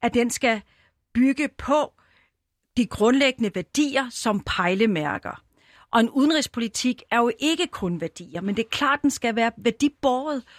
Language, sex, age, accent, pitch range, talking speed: Danish, female, 40-59, native, 195-260 Hz, 155 wpm